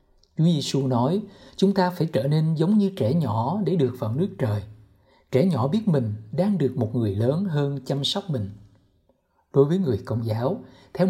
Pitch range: 115-175 Hz